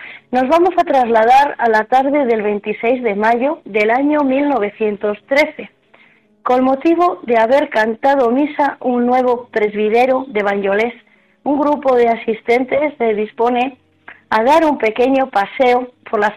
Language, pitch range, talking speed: Spanish, 215-270 Hz, 140 wpm